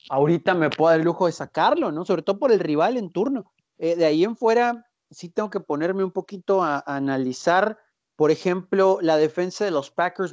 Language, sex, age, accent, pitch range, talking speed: Spanish, male, 40-59, Mexican, 160-195 Hz, 215 wpm